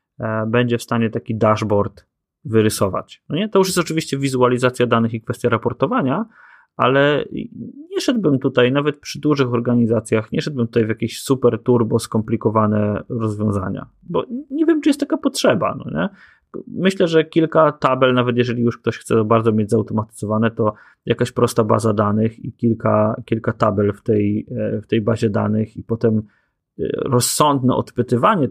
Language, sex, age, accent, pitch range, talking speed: Polish, male, 20-39, native, 110-135 Hz, 160 wpm